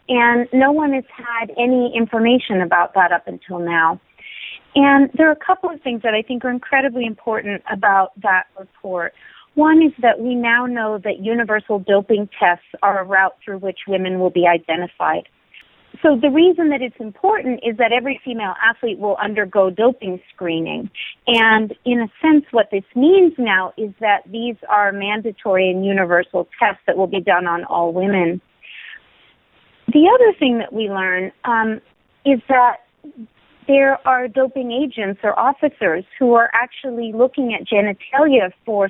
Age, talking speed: 40-59, 165 wpm